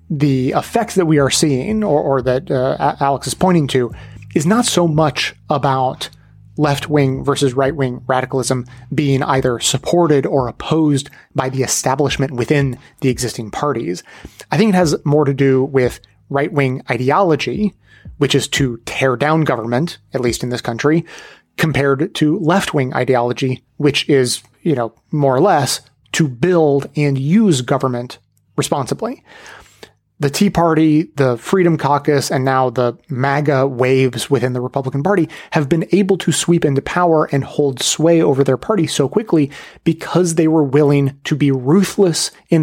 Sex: male